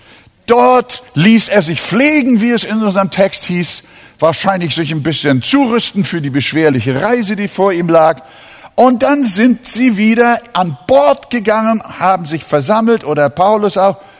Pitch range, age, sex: 165-240 Hz, 50-69, male